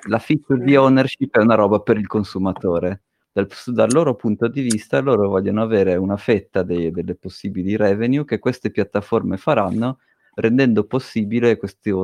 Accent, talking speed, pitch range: native, 155 wpm, 95-110 Hz